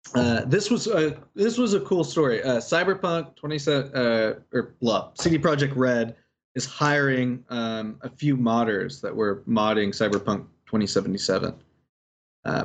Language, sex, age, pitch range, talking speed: English, male, 20-39, 115-145 Hz, 150 wpm